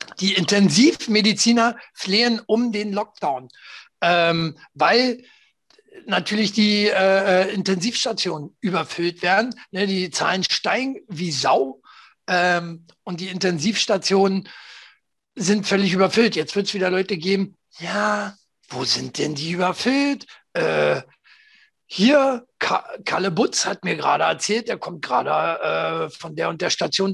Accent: German